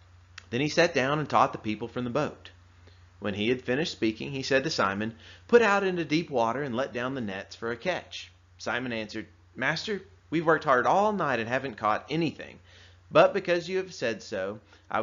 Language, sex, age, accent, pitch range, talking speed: English, male, 30-49, American, 90-155 Hz, 210 wpm